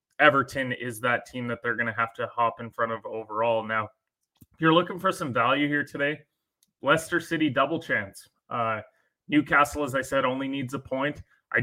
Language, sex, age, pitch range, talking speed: English, male, 20-39, 120-135 Hz, 195 wpm